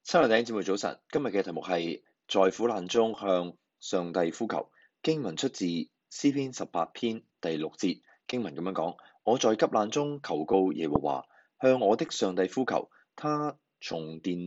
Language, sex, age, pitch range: Chinese, male, 20-39, 90-120 Hz